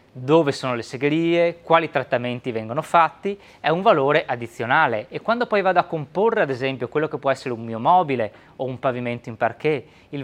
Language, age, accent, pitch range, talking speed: Italian, 20-39, native, 125-165 Hz, 195 wpm